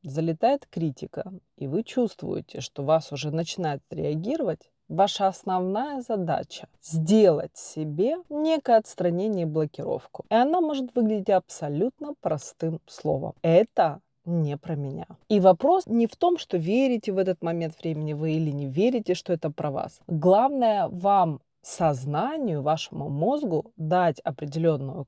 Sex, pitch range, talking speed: female, 155-215 Hz, 135 wpm